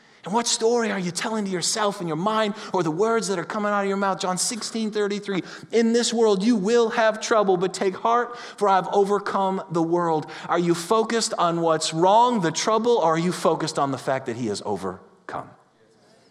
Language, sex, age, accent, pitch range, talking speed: English, male, 30-49, American, 180-225 Hz, 210 wpm